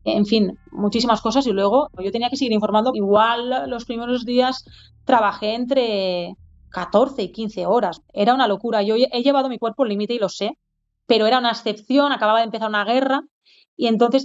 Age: 20-39